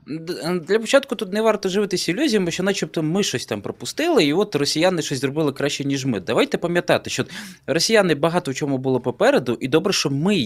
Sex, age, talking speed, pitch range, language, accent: male, 20-39, 195 wpm, 140-210 Hz, Ukrainian, native